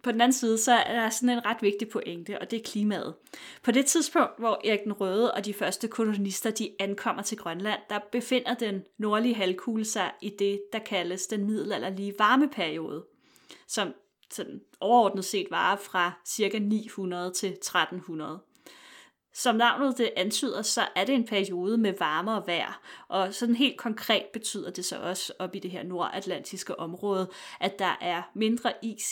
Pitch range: 190-230 Hz